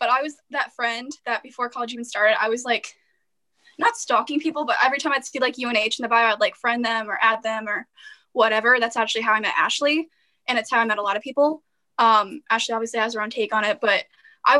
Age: 10-29